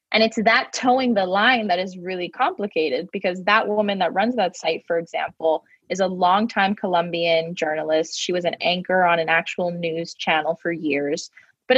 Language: English